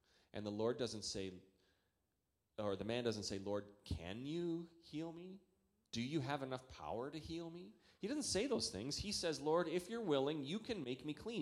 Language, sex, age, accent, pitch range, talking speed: English, male, 30-49, American, 100-145 Hz, 205 wpm